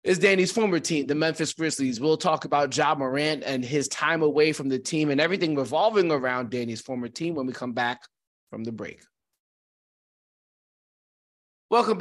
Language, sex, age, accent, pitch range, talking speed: English, male, 20-39, American, 130-160 Hz, 170 wpm